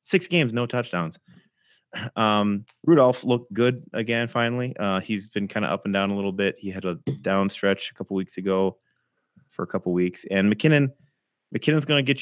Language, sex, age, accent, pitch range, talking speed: English, male, 30-49, American, 85-110 Hz, 195 wpm